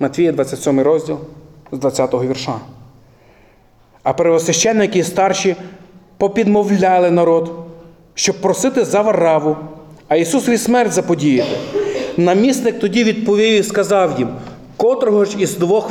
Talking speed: 115 wpm